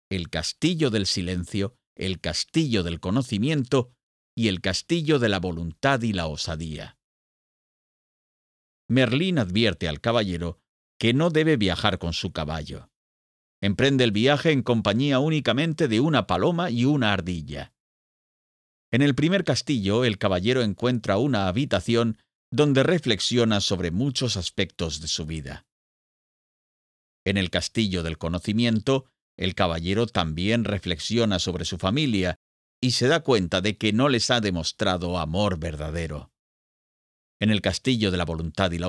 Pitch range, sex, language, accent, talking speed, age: 85-125 Hz, male, Spanish, Spanish, 135 wpm, 50-69